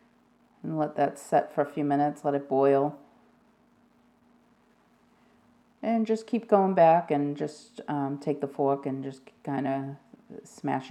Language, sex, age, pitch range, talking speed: English, female, 40-59, 145-235 Hz, 150 wpm